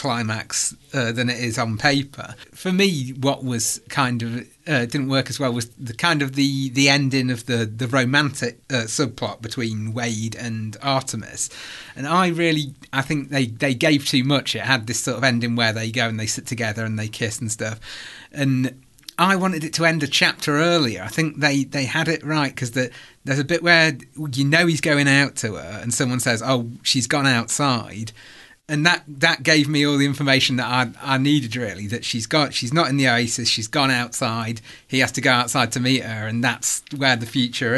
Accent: British